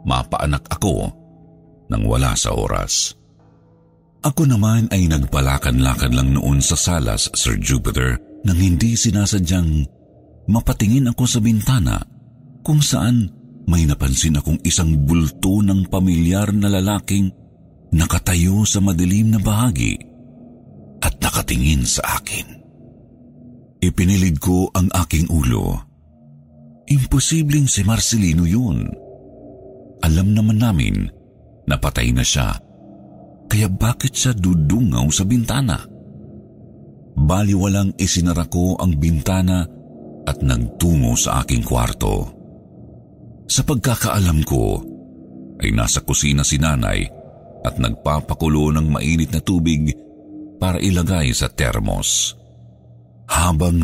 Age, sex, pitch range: 50-69, male, 75-105 Hz